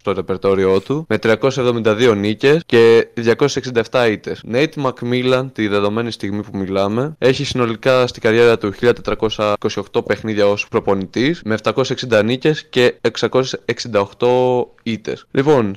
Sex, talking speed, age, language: male, 120 wpm, 20-39, Greek